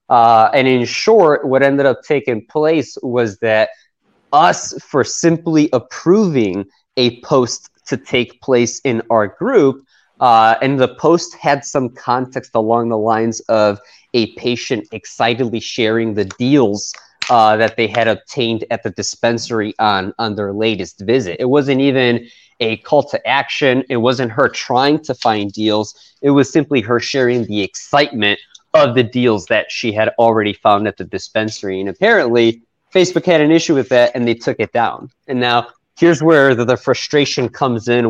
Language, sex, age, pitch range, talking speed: English, male, 20-39, 115-140 Hz, 170 wpm